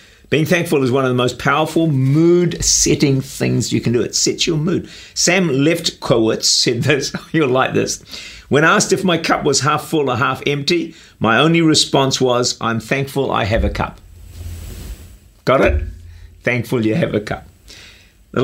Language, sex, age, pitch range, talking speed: English, male, 50-69, 100-155 Hz, 170 wpm